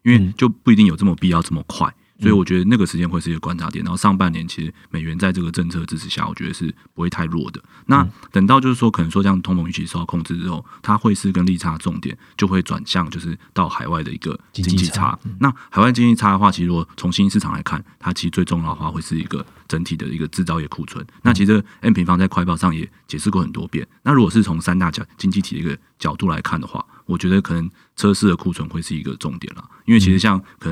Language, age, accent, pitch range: Chinese, 30-49, native, 85-100 Hz